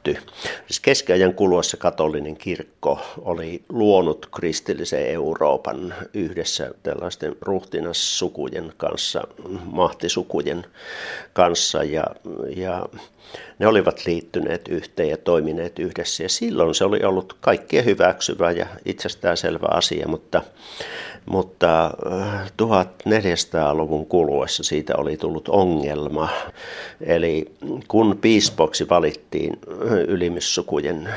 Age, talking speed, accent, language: 60-79, 90 wpm, native, Finnish